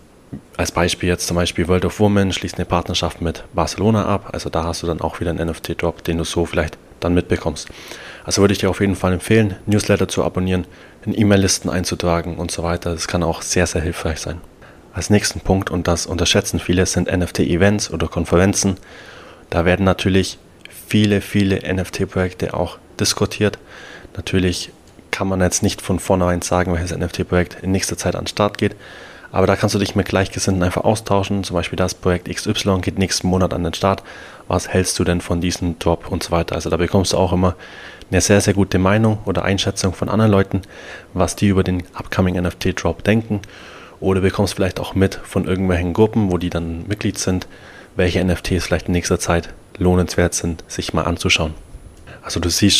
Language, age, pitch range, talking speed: German, 20-39, 85-100 Hz, 195 wpm